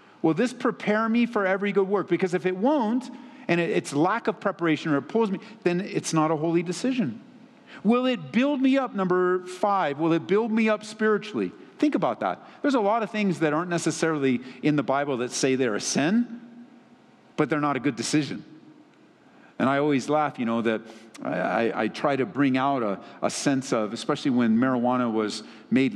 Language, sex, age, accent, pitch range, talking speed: English, male, 50-69, American, 140-215 Hz, 200 wpm